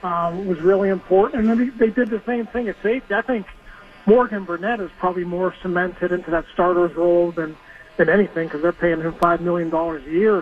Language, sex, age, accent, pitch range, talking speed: English, male, 40-59, American, 175-200 Hz, 200 wpm